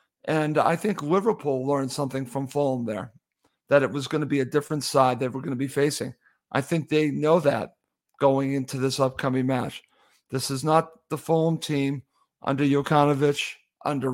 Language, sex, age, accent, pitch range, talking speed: English, male, 50-69, American, 135-150 Hz, 180 wpm